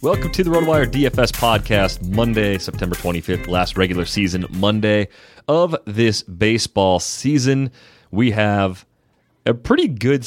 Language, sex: English, male